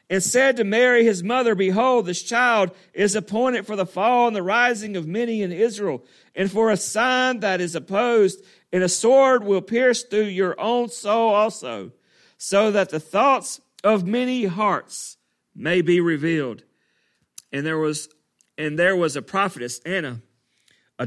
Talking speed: 165 wpm